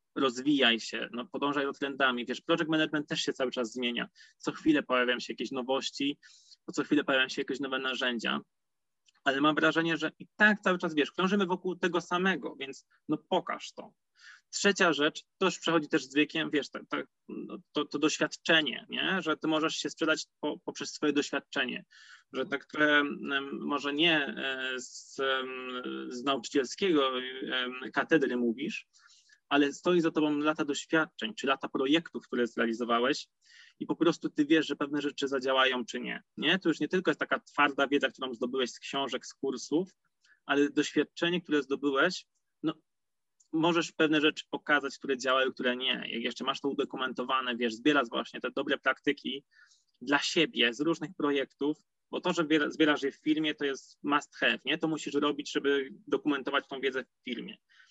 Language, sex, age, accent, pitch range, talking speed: Polish, male, 20-39, native, 130-160 Hz, 170 wpm